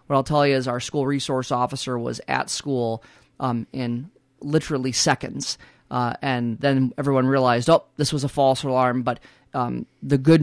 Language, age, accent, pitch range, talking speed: English, 30-49, American, 125-145 Hz, 180 wpm